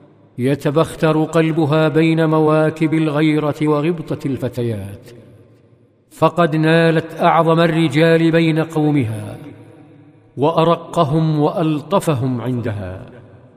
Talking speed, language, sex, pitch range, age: 70 wpm, Arabic, male, 135-165 Hz, 50-69